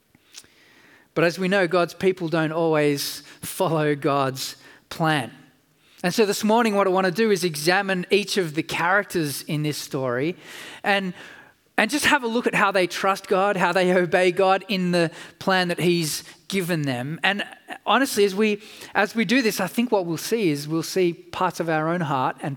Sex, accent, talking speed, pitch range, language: male, Australian, 195 wpm, 150-190 Hz, English